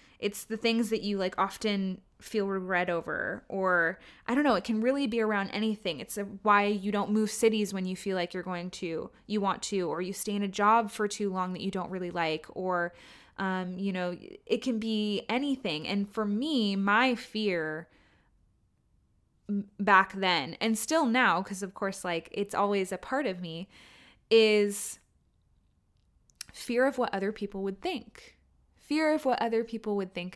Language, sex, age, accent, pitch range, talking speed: English, female, 20-39, American, 190-225 Hz, 185 wpm